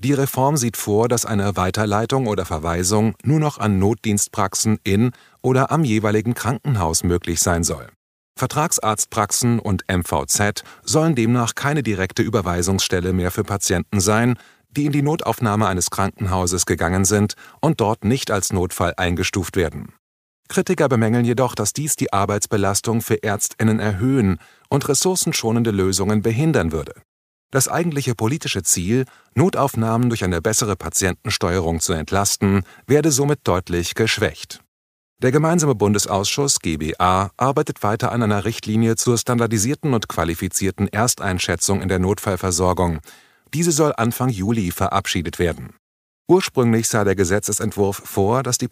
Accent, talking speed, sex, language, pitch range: German, 135 wpm, male, German, 95-125 Hz